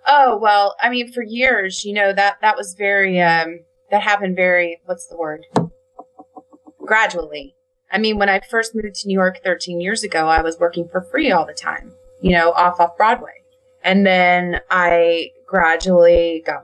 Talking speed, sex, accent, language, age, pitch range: 180 wpm, female, American, English, 30-49, 165-200 Hz